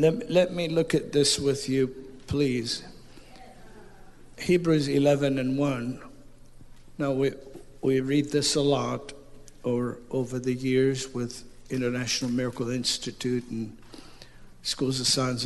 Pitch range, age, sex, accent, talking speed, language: 120-135 Hz, 60-79, male, American, 130 wpm, English